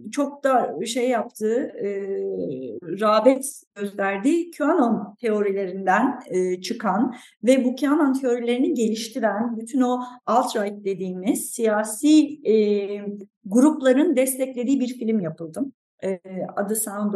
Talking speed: 105 wpm